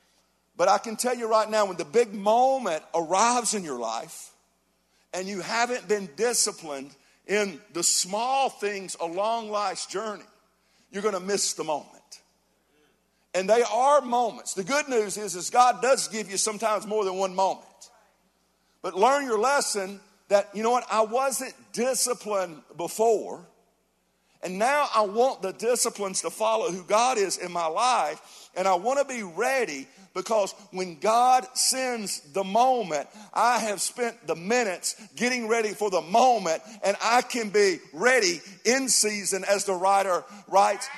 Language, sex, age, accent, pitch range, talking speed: English, male, 50-69, American, 195-245 Hz, 160 wpm